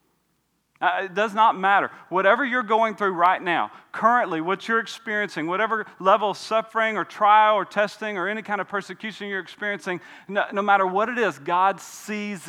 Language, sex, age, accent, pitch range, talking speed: English, male, 40-59, American, 180-220 Hz, 185 wpm